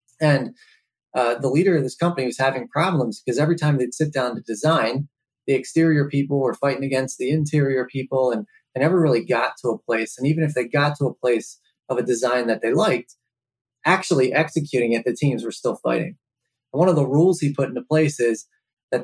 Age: 20-39